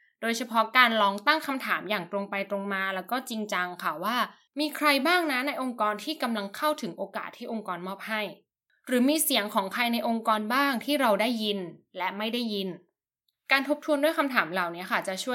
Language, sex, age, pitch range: Thai, female, 10-29, 205-280 Hz